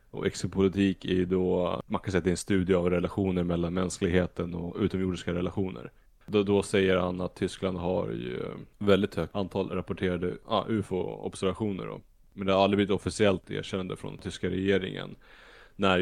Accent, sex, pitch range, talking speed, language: Norwegian, male, 90-100 Hz, 170 wpm, Swedish